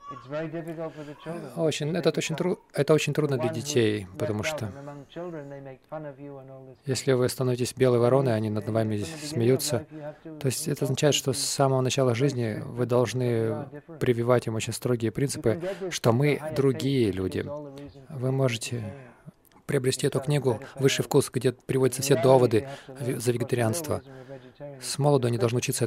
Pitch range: 115-140 Hz